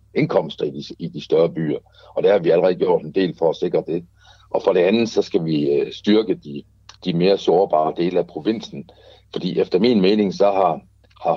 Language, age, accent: Danish, 60-79, native